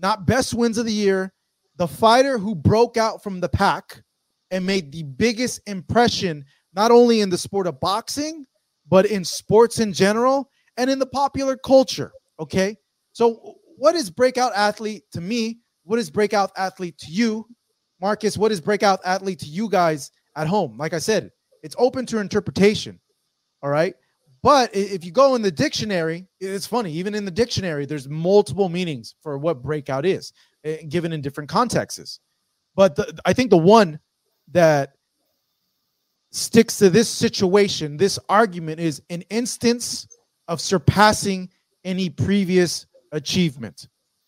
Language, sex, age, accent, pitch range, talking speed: English, male, 20-39, American, 165-225 Hz, 155 wpm